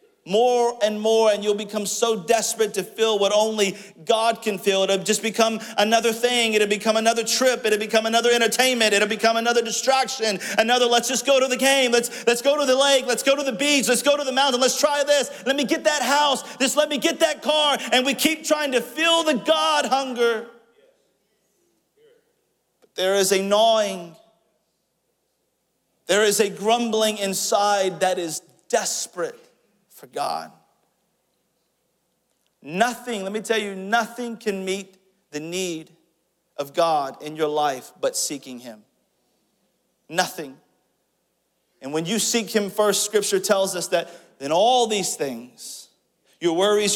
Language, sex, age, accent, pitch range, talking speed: English, male, 40-59, American, 190-250 Hz, 160 wpm